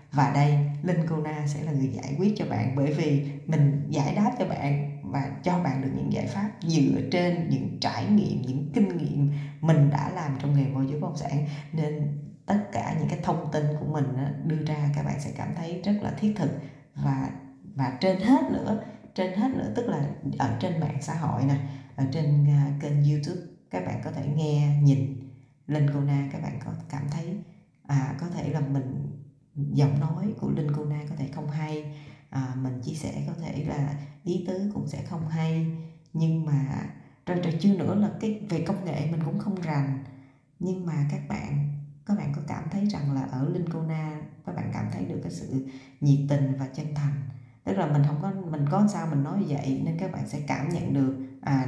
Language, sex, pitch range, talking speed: Vietnamese, female, 140-165 Hz, 210 wpm